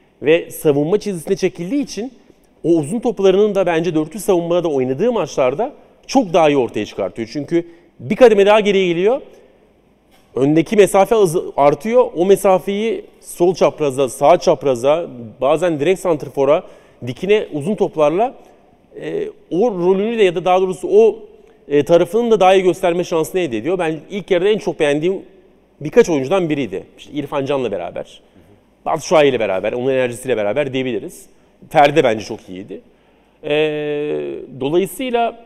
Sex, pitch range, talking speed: male, 150-210 Hz, 140 wpm